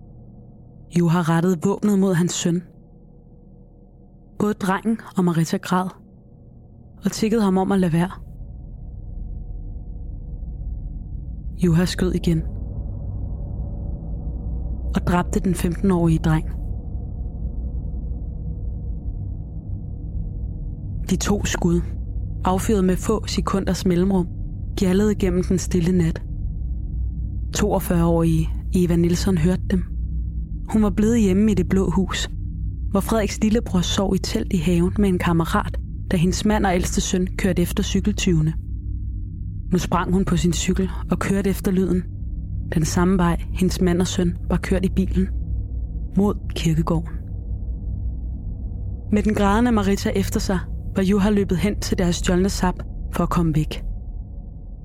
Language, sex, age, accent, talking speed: English, female, 20-39, Danish, 125 wpm